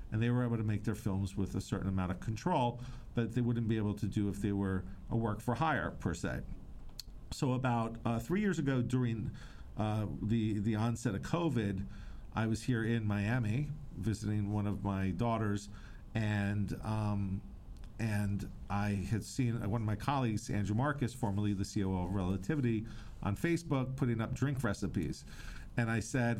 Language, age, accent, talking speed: English, 50-69, American, 180 wpm